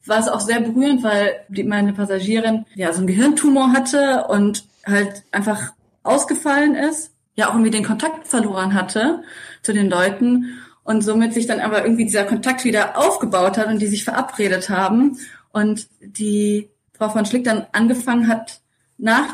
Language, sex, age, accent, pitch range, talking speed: German, female, 20-39, German, 205-235 Hz, 170 wpm